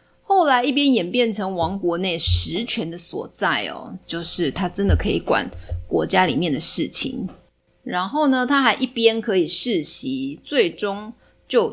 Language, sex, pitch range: Chinese, female, 165-235 Hz